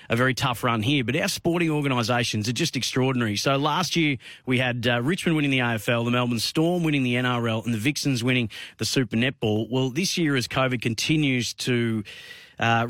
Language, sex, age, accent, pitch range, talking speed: English, male, 30-49, Australian, 115-135 Hz, 200 wpm